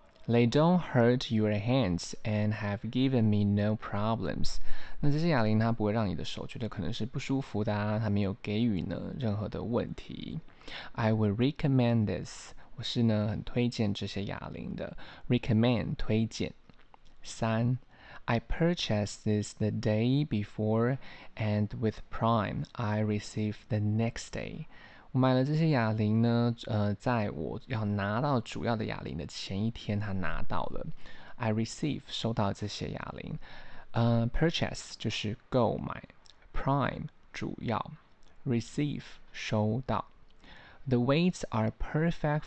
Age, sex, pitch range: 20-39, male, 105-125 Hz